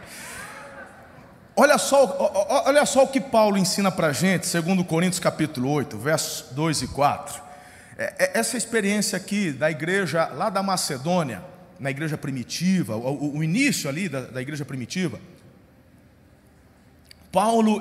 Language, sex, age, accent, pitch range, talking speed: Portuguese, male, 40-59, Brazilian, 180-285 Hz, 120 wpm